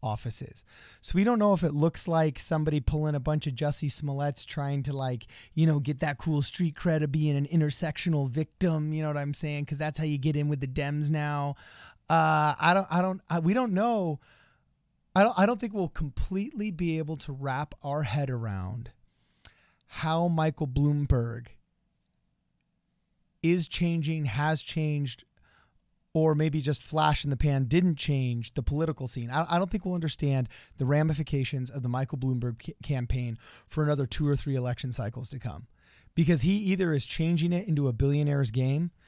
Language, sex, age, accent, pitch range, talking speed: English, male, 30-49, American, 130-160 Hz, 185 wpm